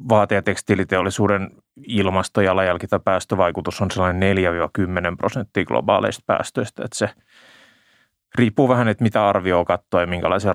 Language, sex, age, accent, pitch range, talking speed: Finnish, male, 30-49, native, 95-110 Hz, 130 wpm